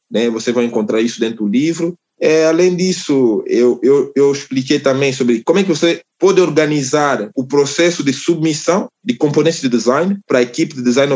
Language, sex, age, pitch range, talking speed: Portuguese, male, 20-39, 115-155 Hz, 185 wpm